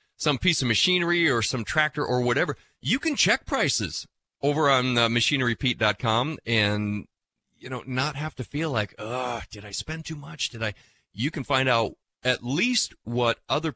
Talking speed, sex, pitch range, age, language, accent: 175 wpm, male, 100-130 Hz, 30-49, English, American